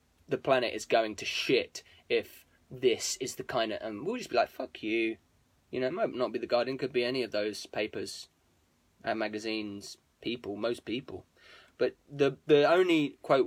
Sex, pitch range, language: male, 105-140 Hz, English